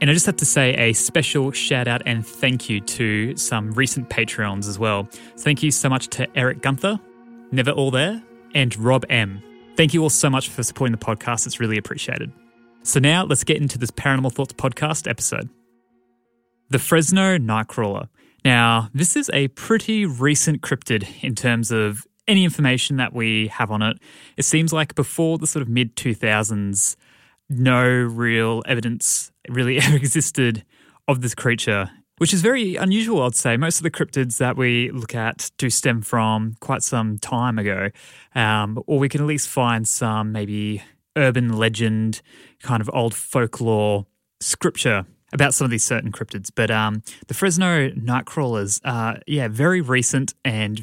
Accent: Australian